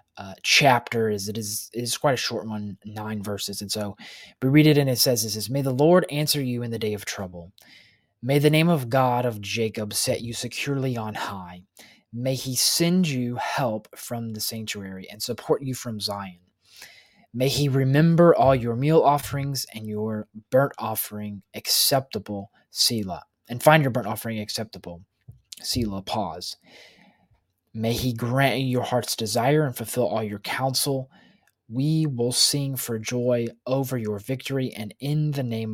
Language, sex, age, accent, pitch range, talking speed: English, male, 20-39, American, 105-130 Hz, 170 wpm